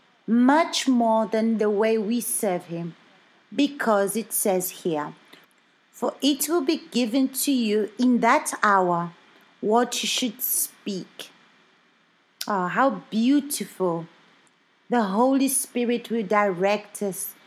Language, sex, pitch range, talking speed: Portuguese, female, 200-250 Hz, 120 wpm